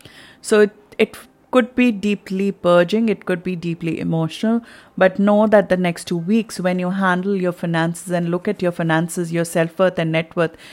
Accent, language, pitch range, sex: Indian, English, 175-200 Hz, female